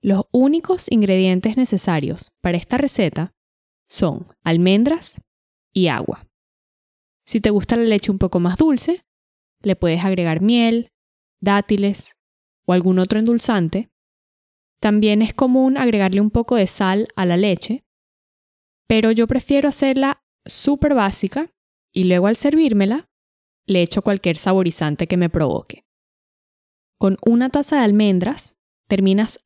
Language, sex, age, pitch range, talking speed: Spanish, female, 10-29, 190-245 Hz, 130 wpm